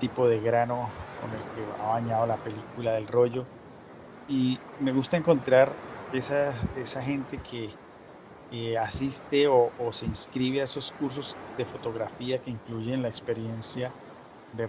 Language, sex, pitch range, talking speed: Spanish, male, 115-130 Hz, 145 wpm